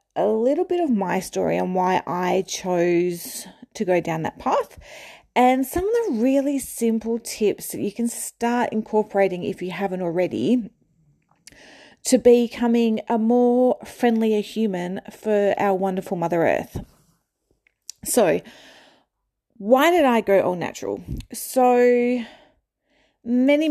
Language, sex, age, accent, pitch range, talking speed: English, female, 30-49, Australian, 185-245 Hz, 130 wpm